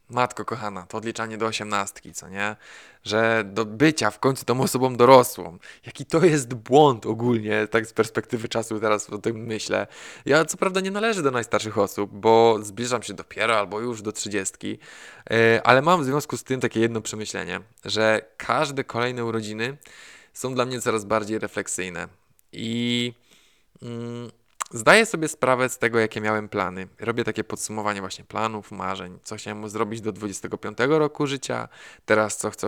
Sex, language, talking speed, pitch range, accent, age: male, Polish, 165 wpm, 105-130 Hz, native, 20-39